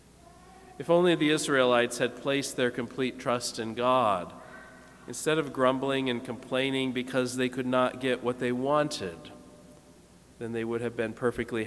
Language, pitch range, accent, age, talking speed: English, 120-155 Hz, American, 40-59, 155 wpm